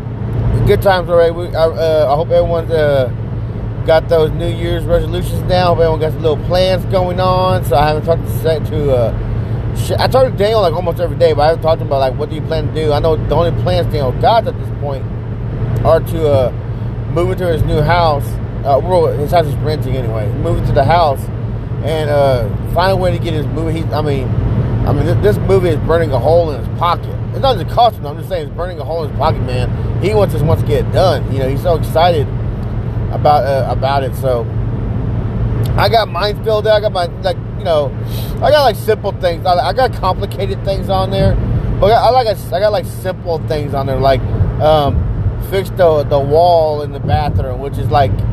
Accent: American